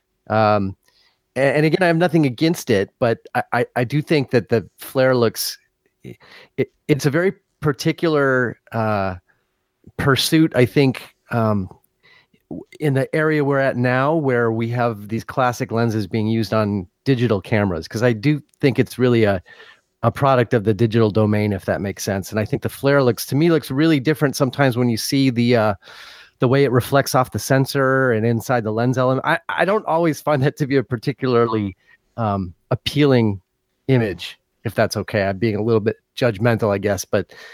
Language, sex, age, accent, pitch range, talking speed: English, male, 30-49, American, 110-145 Hz, 185 wpm